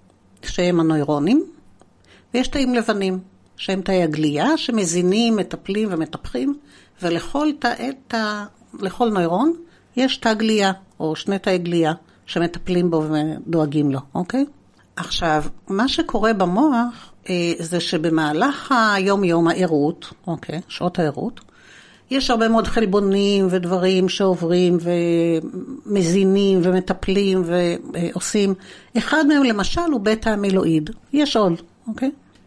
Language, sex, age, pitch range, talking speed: Hebrew, female, 60-79, 175-240 Hz, 100 wpm